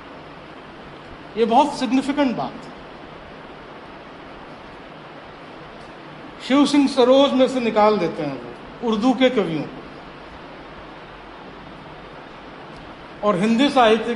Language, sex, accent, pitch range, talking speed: Hindi, male, native, 190-250 Hz, 80 wpm